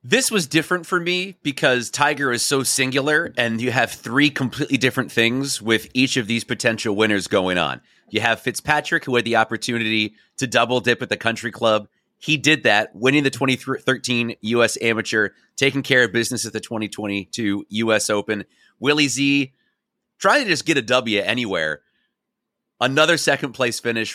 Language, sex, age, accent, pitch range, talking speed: English, male, 30-49, American, 115-150 Hz, 170 wpm